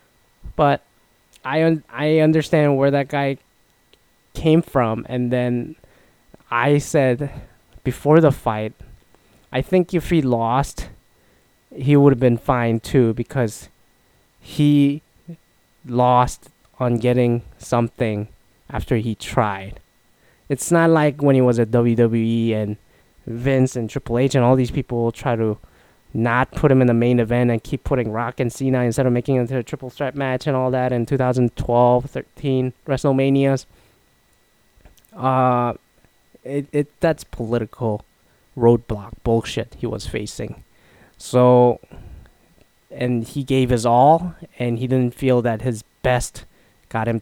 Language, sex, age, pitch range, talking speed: English, male, 20-39, 115-135 Hz, 135 wpm